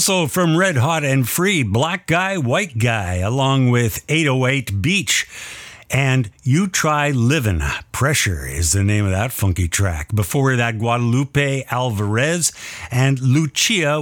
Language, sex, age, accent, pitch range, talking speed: English, male, 50-69, American, 105-140 Hz, 135 wpm